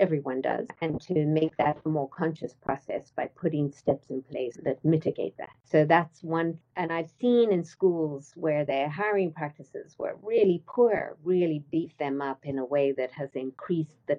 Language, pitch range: English, 145-175 Hz